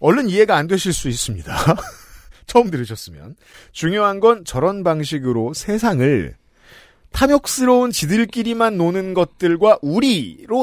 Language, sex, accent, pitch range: Korean, male, native, 135-230 Hz